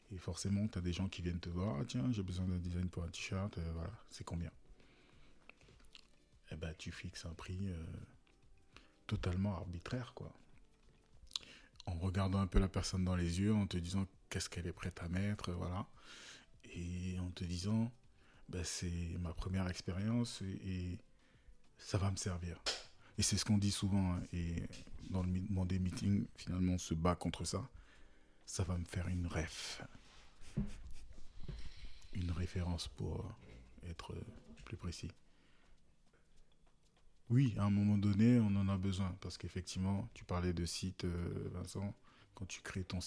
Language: French